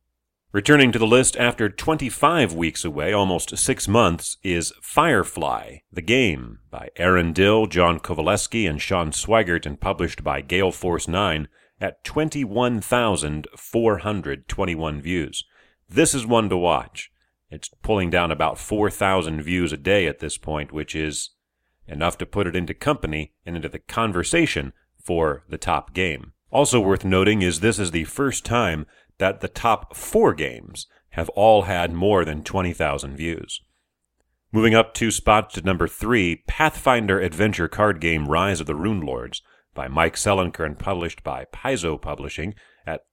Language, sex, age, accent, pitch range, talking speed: English, male, 40-59, American, 80-105 Hz, 155 wpm